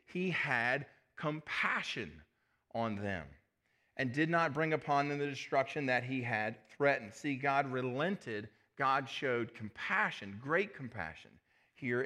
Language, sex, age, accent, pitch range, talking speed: English, male, 40-59, American, 130-160 Hz, 130 wpm